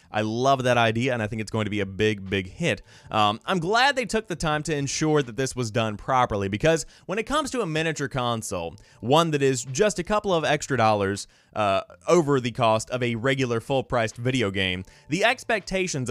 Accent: American